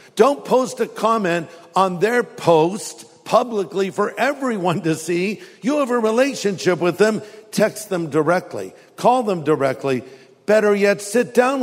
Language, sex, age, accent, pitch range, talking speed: English, male, 50-69, American, 160-210 Hz, 145 wpm